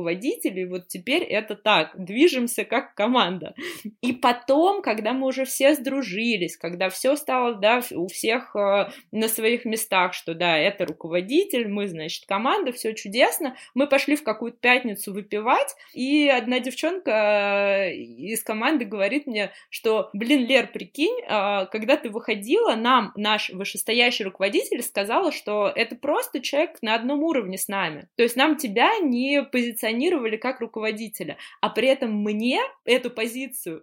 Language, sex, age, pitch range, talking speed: Russian, female, 20-39, 200-270 Hz, 140 wpm